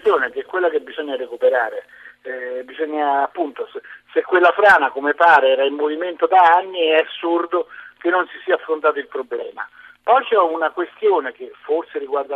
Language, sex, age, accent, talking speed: Italian, male, 50-69, native, 175 wpm